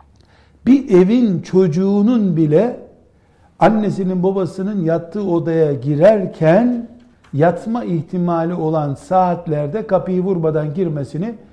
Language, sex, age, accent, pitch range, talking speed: Turkish, male, 60-79, native, 150-195 Hz, 85 wpm